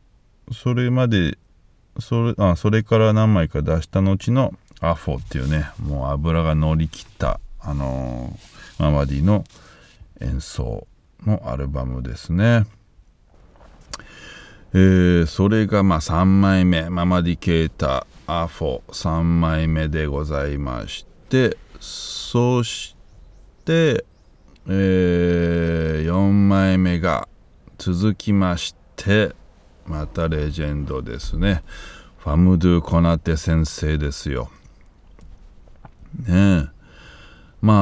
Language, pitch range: Japanese, 75-100 Hz